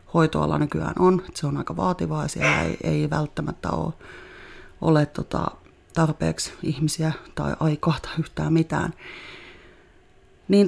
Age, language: 30-49, Finnish